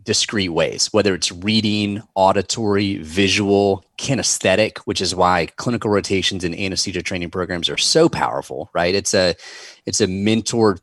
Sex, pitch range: male, 90-105 Hz